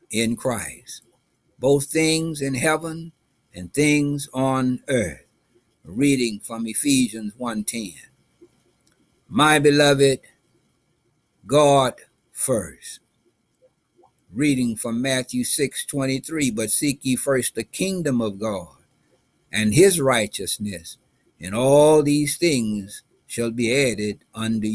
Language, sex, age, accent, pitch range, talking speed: English, male, 60-79, American, 120-145 Hz, 100 wpm